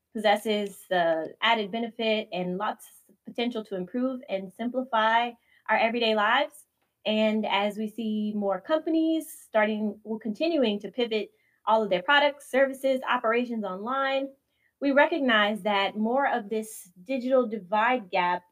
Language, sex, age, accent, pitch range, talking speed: English, female, 20-39, American, 200-255 Hz, 135 wpm